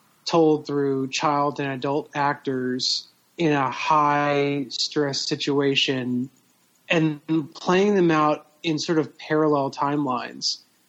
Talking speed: 110 wpm